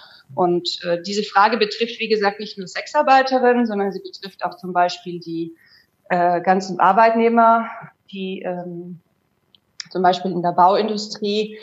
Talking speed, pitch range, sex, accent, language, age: 140 wpm, 190-235 Hz, female, German, German, 30-49